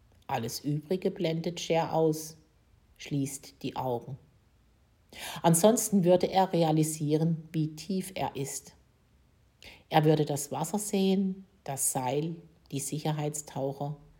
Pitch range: 140-180 Hz